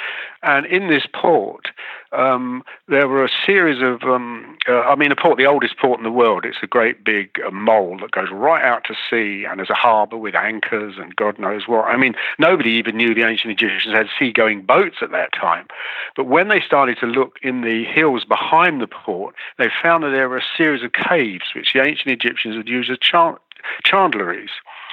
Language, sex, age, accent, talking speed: English, male, 50-69, British, 210 wpm